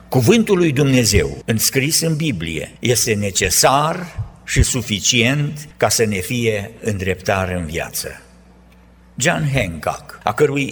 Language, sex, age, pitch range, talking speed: Romanian, male, 60-79, 90-135 Hz, 120 wpm